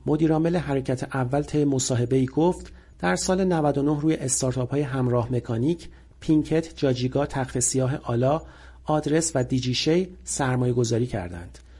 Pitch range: 125-160 Hz